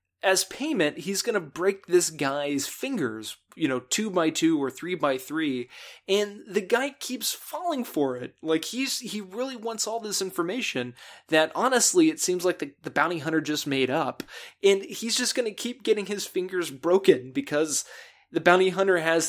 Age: 20-39